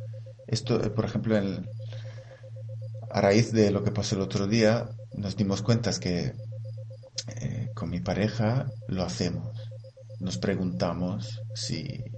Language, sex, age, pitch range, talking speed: Spanish, male, 30-49, 100-110 Hz, 135 wpm